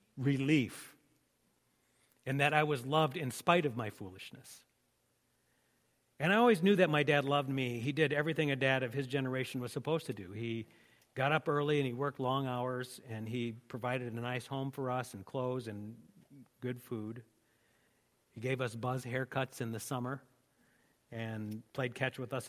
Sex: male